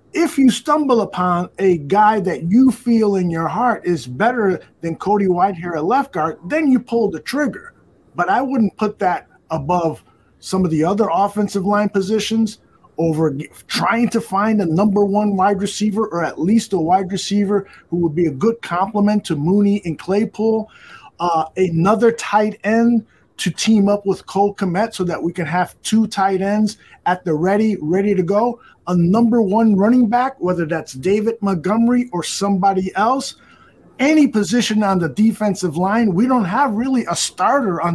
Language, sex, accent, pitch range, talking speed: English, male, American, 180-230 Hz, 180 wpm